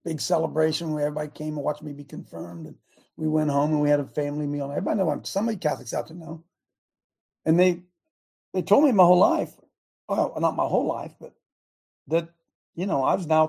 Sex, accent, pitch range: male, American, 145-175 Hz